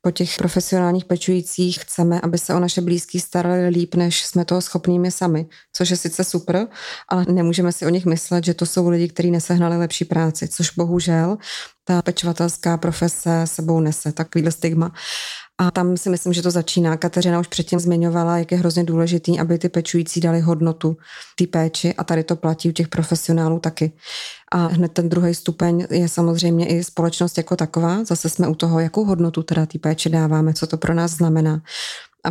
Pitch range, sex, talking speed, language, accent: 165-175 Hz, female, 190 wpm, Czech, native